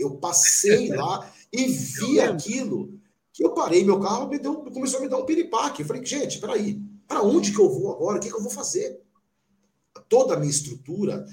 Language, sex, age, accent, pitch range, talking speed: Portuguese, male, 50-69, Brazilian, 135-220 Hz, 205 wpm